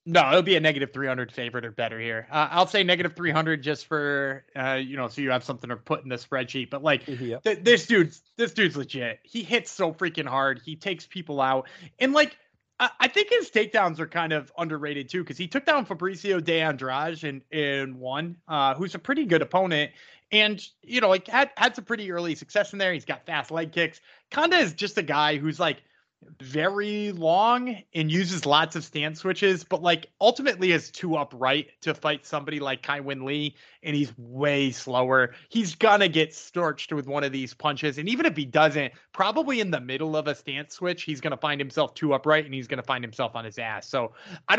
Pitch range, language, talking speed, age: 140-185 Hz, English, 215 wpm, 20-39